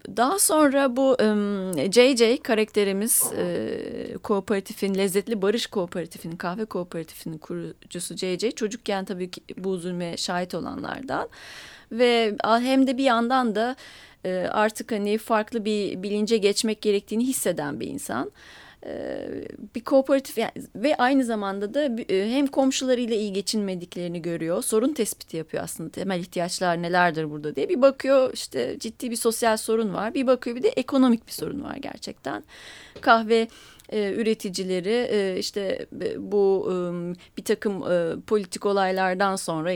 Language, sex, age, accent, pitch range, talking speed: Turkish, female, 30-49, native, 180-230 Hz, 125 wpm